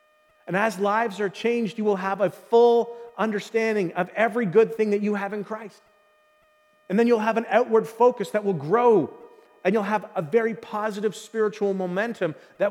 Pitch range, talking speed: 185-225 Hz, 185 wpm